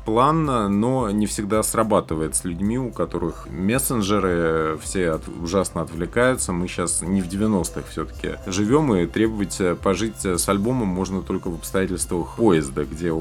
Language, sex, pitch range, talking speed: Russian, male, 85-105 Hz, 145 wpm